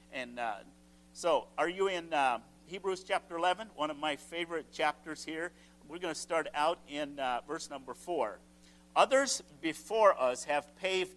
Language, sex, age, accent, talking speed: English, male, 50-69, American, 165 wpm